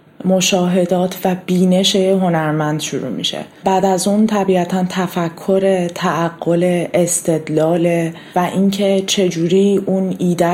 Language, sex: Persian, female